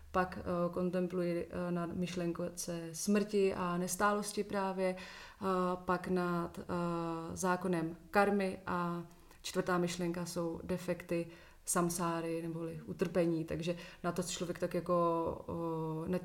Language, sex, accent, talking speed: Czech, female, native, 100 wpm